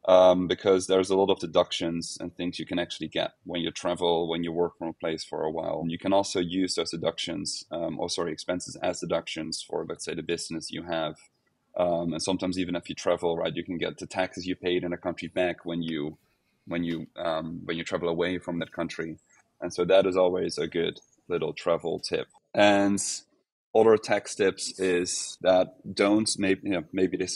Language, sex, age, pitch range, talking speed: English, male, 30-49, 85-95 Hz, 215 wpm